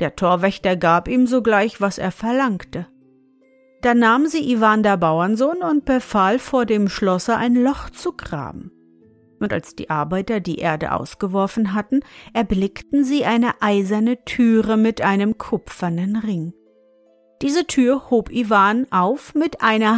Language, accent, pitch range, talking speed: German, German, 190-240 Hz, 140 wpm